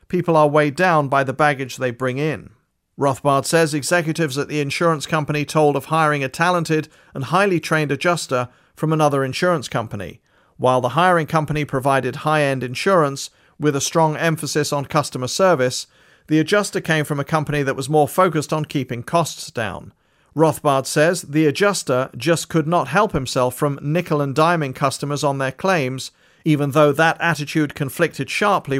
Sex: male